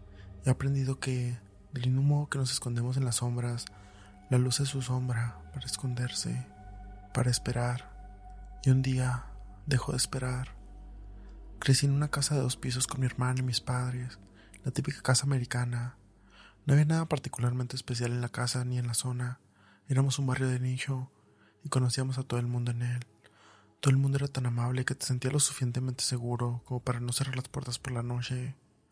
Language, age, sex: Spanish, 20-39, male